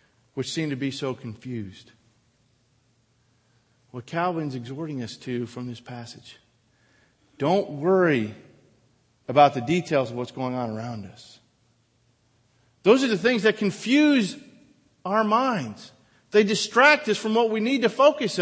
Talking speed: 135 wpm